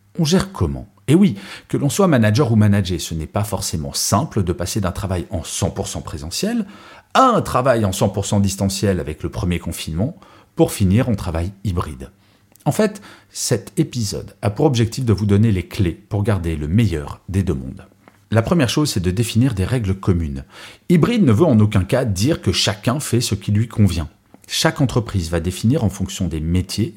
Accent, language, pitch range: French, French, 90-115 Hz